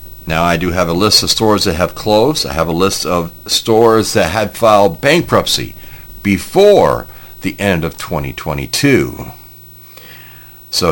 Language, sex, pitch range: English, male, 75-105 Hz